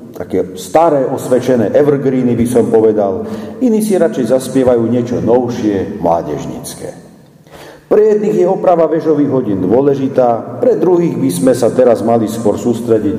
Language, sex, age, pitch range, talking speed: Slovak, male, 50-69, 120-180 Hz, 135 wpm